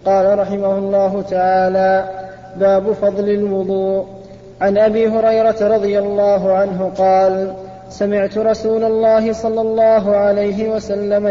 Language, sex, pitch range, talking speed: Arabic, male, 195-220 Hz, 110 wpm